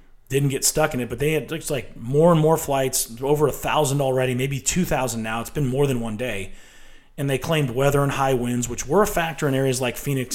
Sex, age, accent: male, 30-49, American